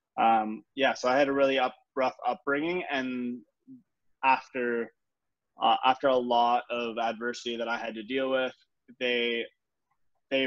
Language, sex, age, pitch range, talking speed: English, male, 20-39, 115-130 Hz, 150 wpm